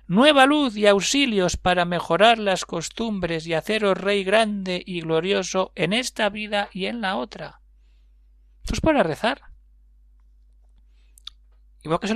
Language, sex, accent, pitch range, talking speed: Spanish, male, Spanish, 165-225 Hz, 140 wpm